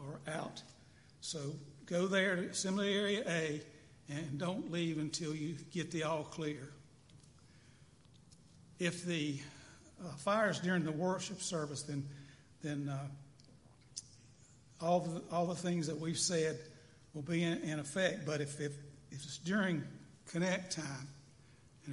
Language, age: English, 60-79